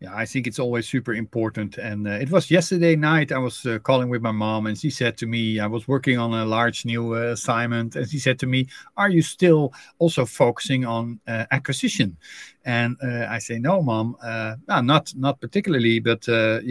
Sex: male